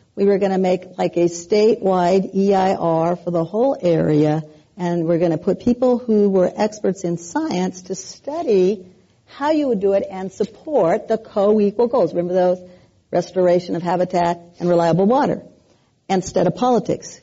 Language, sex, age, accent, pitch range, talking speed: English, female, 50-69, American, 175-225 Hz, 165 wpm